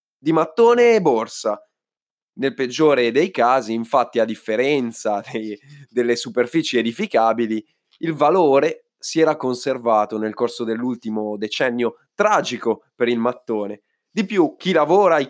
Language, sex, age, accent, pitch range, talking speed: Italian, male, 20-39, native, 120-165 Hz, 130 wpm